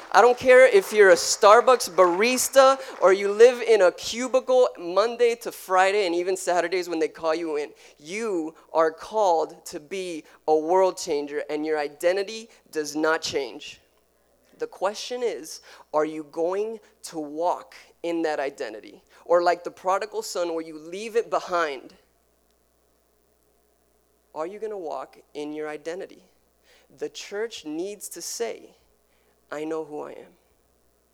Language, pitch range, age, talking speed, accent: English, 155-255 Hz, 20-39, 150 wpm, American